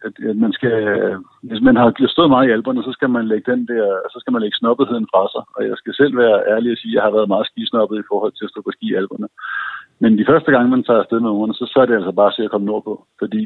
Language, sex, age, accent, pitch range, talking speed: Danish, male, 60-79, native, 105-120 Hz, 290 wpm